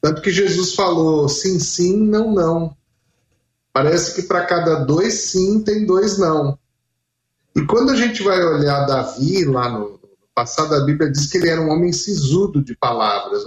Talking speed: 170 wpm